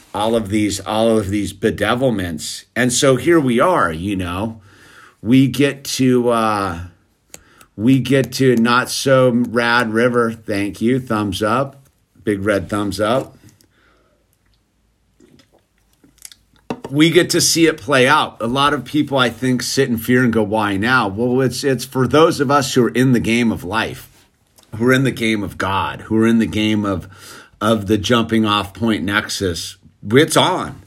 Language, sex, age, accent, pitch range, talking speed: English, male, 50-69, American, 105-130 Hz, 170 wpm